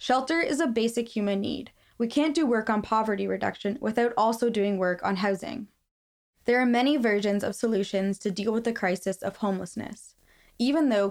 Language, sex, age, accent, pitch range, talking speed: English, female, 20-39, American, 200-240 Hz, 185 wpm